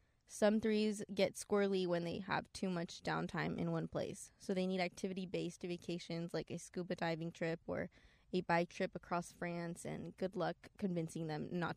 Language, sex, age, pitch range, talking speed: English, female, 20-39, 170-195 Hz, 180 wpm